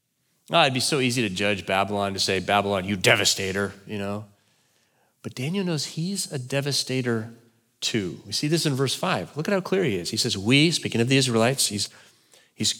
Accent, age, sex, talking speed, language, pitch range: American, 40-59, male, 205 wpm, English, 110-140 Hz